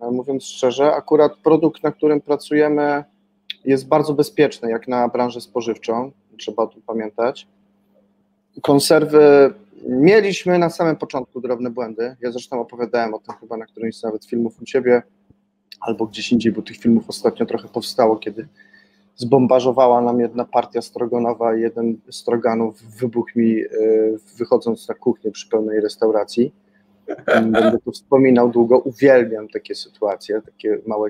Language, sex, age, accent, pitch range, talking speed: Polish, male, 20-39, native, 115-150 Hz, 140 wpm